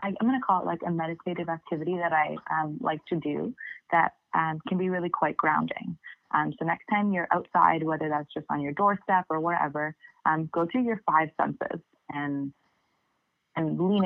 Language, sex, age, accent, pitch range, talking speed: English, female, 20-39, American, 155-175 Hz, 190 wpm